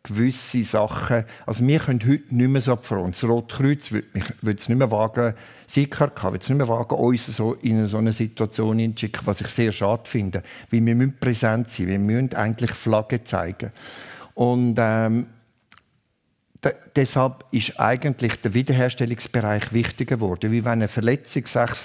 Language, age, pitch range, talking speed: German, 50-69, 110-125 Hz, 175 wpm